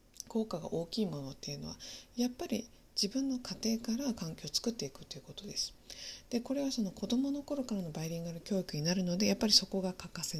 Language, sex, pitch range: Japanese, female, 175-240 Hz